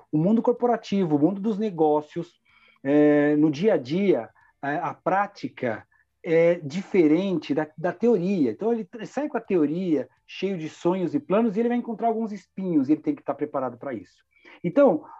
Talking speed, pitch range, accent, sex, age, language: 180 wpm, 150-225 Hz, Brazilian, male, 40-59, Portuguese